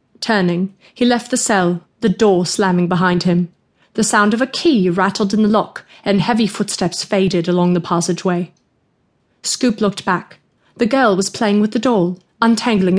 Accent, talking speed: British, 170 wpm